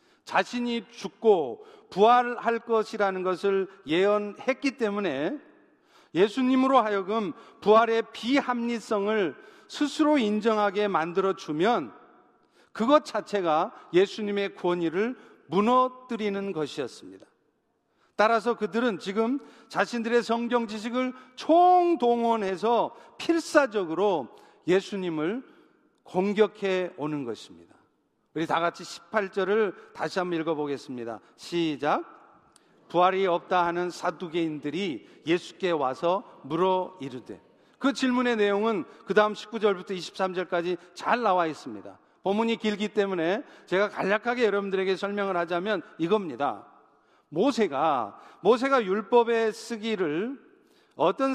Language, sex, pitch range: Korean, male, 185-245 Hz